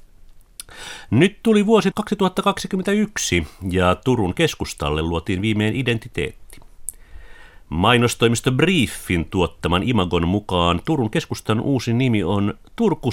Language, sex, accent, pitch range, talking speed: Finnish, male, native, 90-140 Hz, 90 wpm